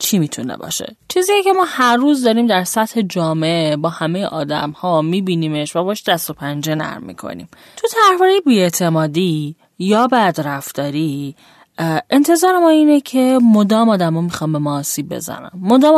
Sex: female